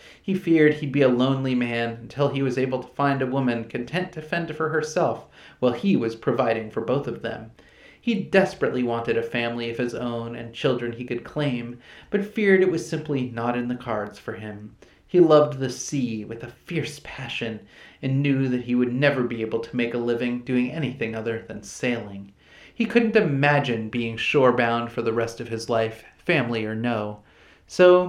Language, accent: English, American